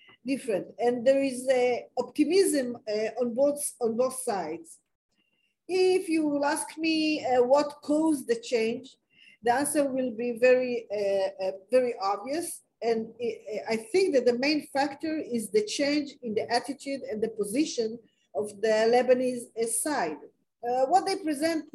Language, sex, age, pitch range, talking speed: English, female, 40-59, 225-290 Hz, 155 wpm